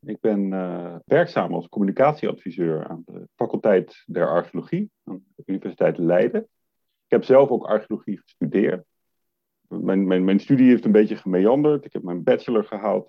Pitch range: 90-130 Hz